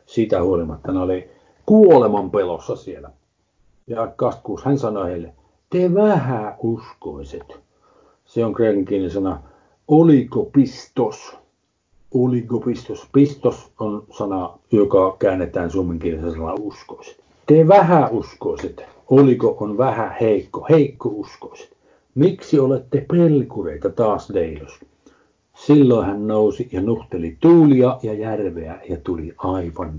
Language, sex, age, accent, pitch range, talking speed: Finnish, male, 60-79, native, 95-140 Hz, 110 wpm